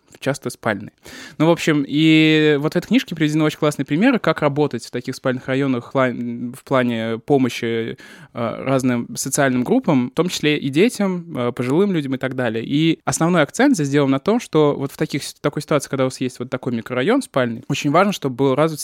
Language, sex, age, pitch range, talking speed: Russian, male, 20-39, 125-150 Hz, 205 wpm